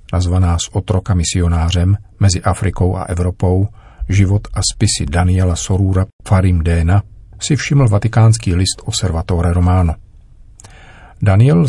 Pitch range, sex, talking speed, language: 90-105 Hz, male, 120 wpm, Czech